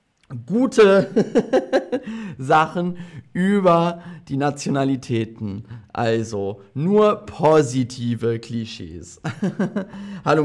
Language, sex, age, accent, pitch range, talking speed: German, male, 40-59, German, 115-170 Hz, 55 wpm